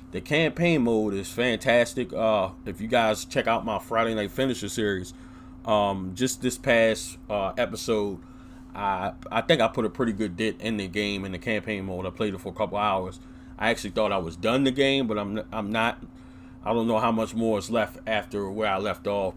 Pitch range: 95-115 Hz